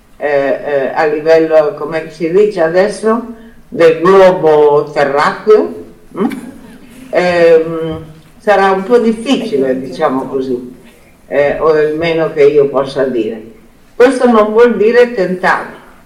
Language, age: Italian, 50-69